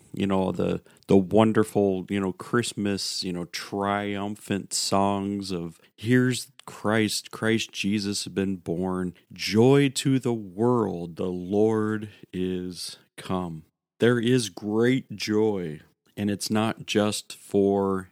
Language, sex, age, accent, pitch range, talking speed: English, male, 40-59, American, 95-115 Hz, 125 wpm